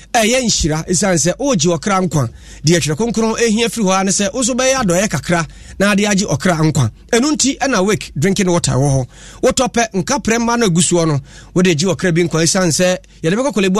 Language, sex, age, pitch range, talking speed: English, male, 30-49, 150-205 Hz, 200 wpm